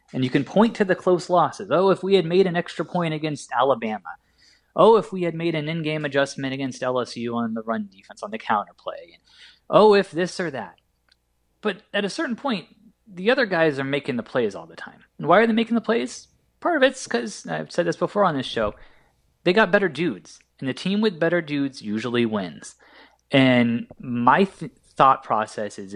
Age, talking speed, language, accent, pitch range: 20-39, 215 wpm, English, American, 115-175 Hz